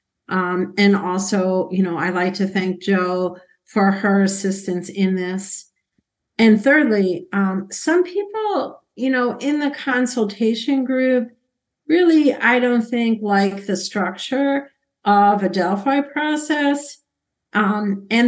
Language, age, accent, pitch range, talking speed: English, 50-69, American, 190-225 Hz, 130 wpm